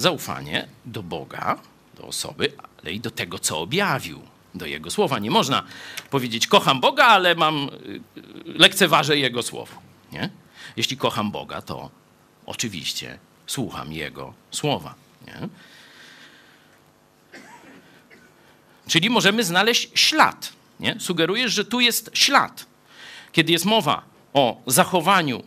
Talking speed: 115 wpm